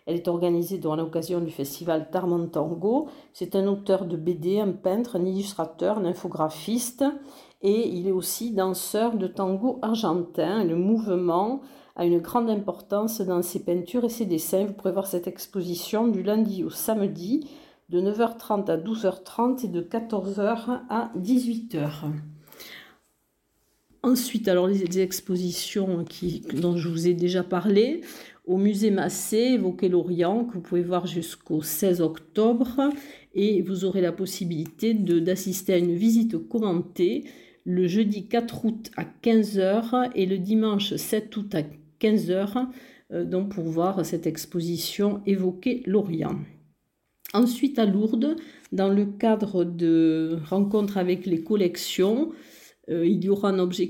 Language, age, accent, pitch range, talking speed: French, 50-69, French, 175-220 Hz, 145 wpm